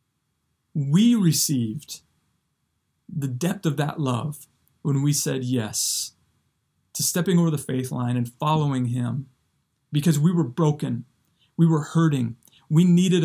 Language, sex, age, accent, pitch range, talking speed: English, male, 30-49, American, 140-175 Hz, 130 wpm